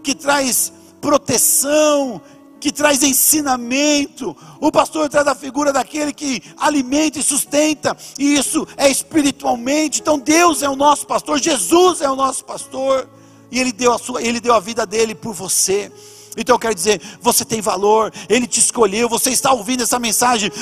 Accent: Brazilian